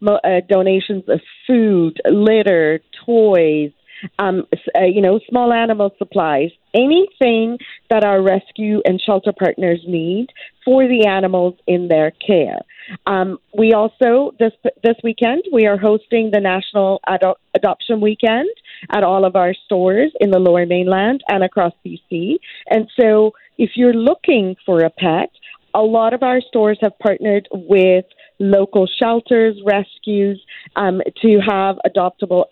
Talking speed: 140 wpm